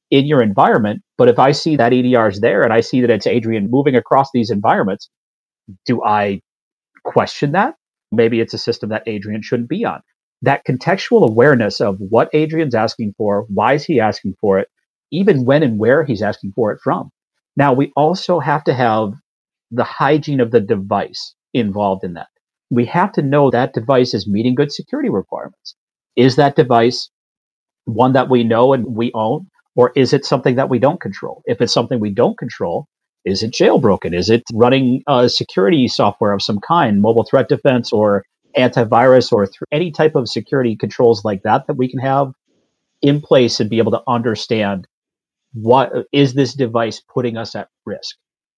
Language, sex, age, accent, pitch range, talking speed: English, male, 40-59, American, 115-135 Hz, 185 wpm